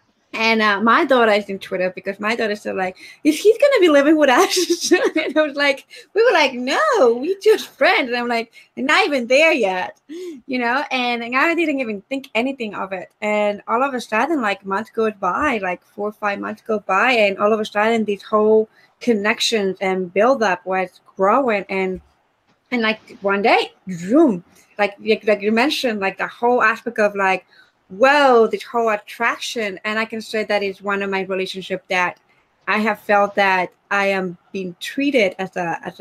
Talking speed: 200 wpm